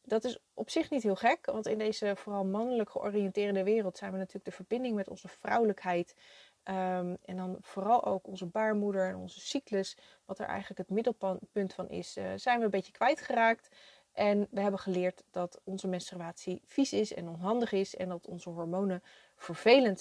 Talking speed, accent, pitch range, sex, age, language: 185 wpm, Dutch, 185-220 Hz, female, 30-49, Dutch